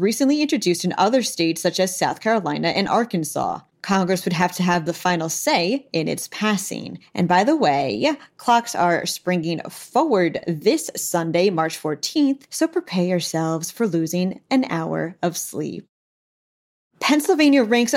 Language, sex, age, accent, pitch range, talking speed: English, female, 30-49, American, 175-220 Hz, 150 wpm